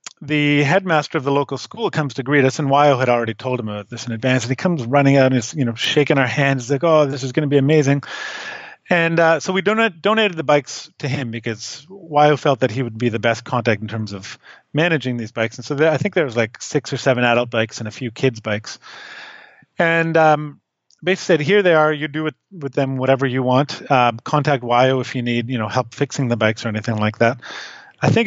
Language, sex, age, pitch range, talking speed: English, male, 30-49, 130-160 Hz, 250 wpm